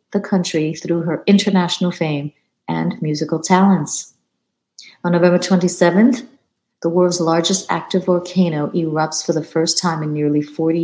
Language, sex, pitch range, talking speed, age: English, female, 155-195 Hz, 140 wpm, 50-69